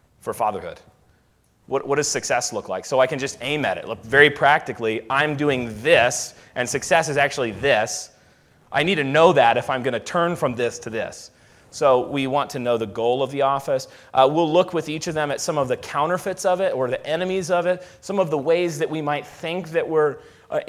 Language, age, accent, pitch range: English, 30-49, American, 120-150 Hz